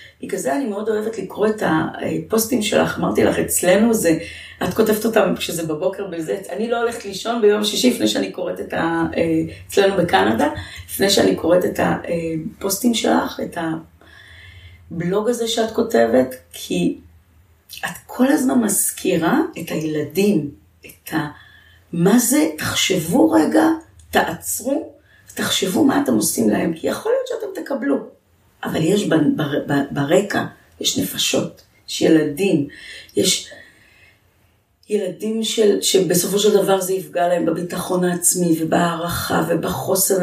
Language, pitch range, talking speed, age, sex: Hebrew, 165-240 Hz, 130 wpm, 30-49, female